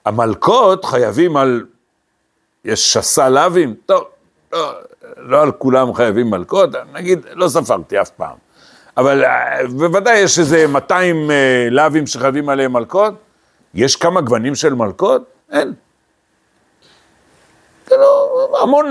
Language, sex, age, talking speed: Hebrew, male, 60-79, 115 wpm